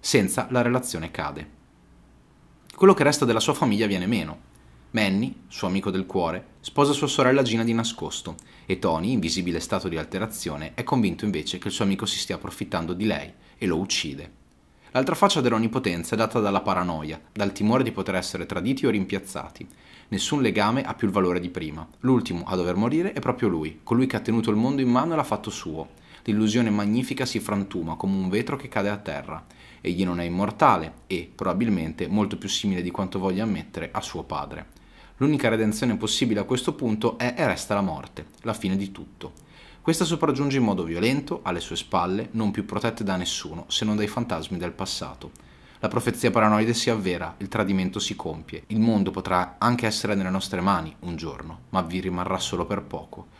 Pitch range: 90-115 Hz